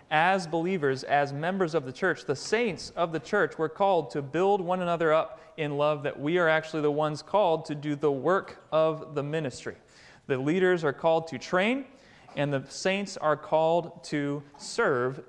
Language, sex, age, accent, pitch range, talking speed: English, male, 30-49, American, 150-190 Hz, 190 wpm